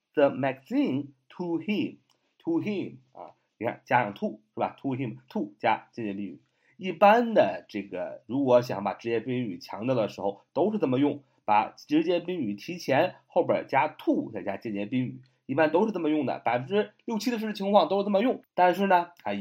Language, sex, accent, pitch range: Chinese, male, native, 120-195 Hz